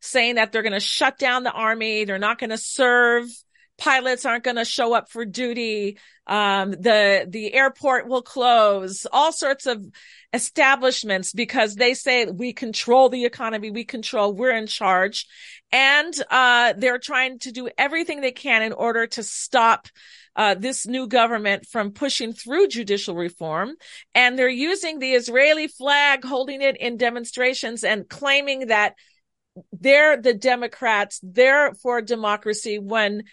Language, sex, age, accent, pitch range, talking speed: English, female, 40-59, American, 210-270 Hz, 155 wpm